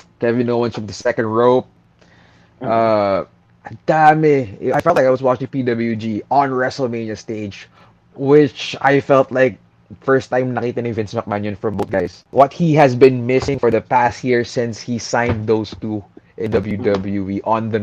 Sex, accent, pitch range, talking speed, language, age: male, Filipino, 100-120 Hz, 170 wpm, English, 20-39